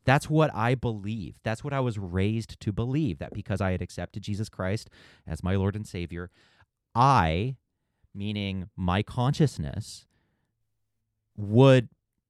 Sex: male